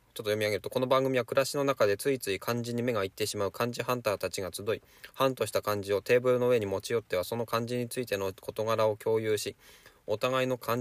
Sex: male